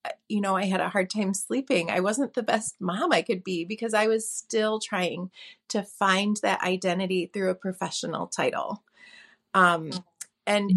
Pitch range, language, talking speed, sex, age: 185-240 Hz, English, 175 wpm, female, 30-49